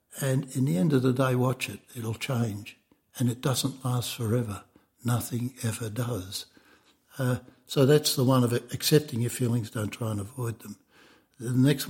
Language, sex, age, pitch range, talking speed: English, male, 60-79, 115-130 Hz, 180 wpm